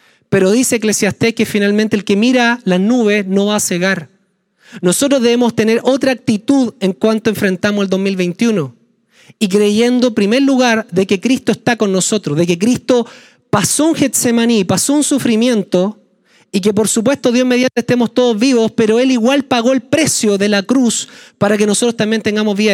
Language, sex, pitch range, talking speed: Spanish, male, 205-255 Hz, 180 wpm